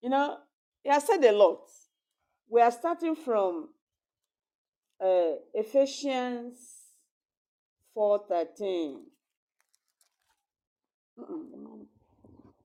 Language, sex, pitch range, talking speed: English, female, 190-270 Hz, 75 wpm